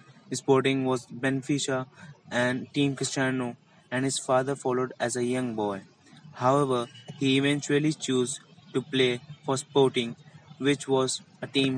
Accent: Indian